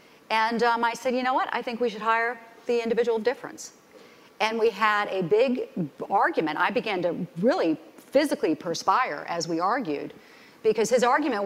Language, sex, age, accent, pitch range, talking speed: English, female, 50-69, American, 175-225 Hz, 180 wpm